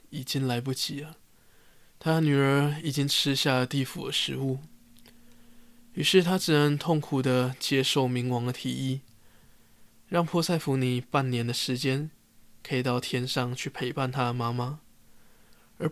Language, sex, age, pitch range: Chinese, male, 20-39, 125-145 Hz